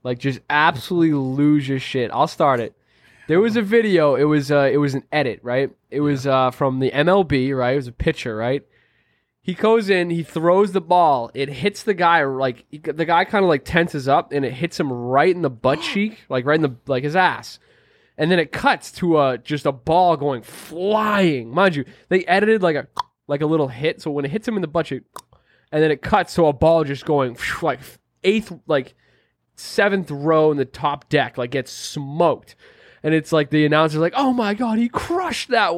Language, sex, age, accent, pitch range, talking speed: English, male, 20-39, American, 135-185 Hz, 220 wpm